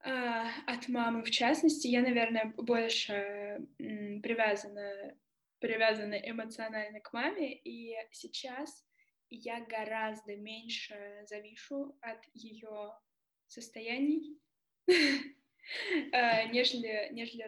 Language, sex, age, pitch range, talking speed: Russian, female, 10-29, 220-260 Hz, 75 wpm